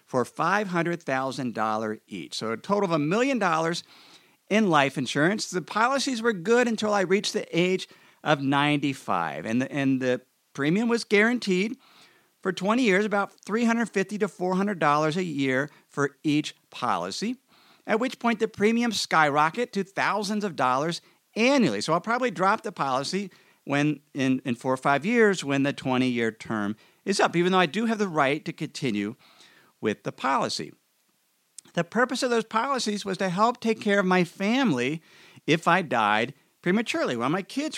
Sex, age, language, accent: male, 50-69, English, American